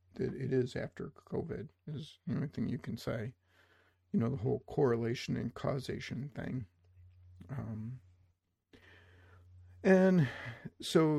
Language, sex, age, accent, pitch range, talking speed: English, male, 50-69, American, 100-130 Hz, 125 wpm